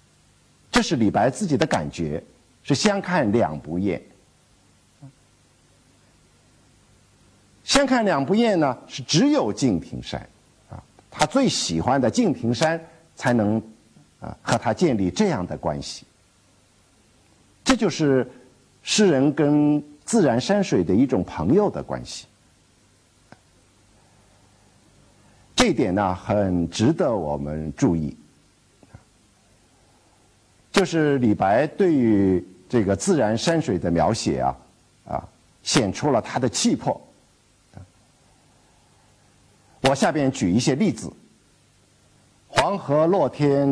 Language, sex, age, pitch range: Chinese, male, 50-69, 95-145 Hz